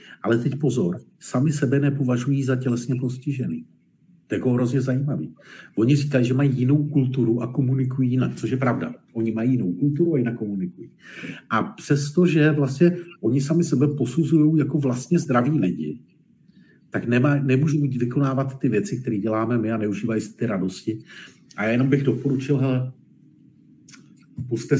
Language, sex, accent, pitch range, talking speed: Czech, male, native, 115-140 Hz, 155 wpm